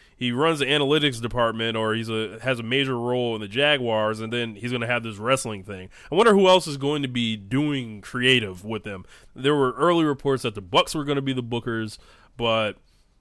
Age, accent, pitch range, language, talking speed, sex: 20-39, American, 115-140 Hz, English, 225 wpm, male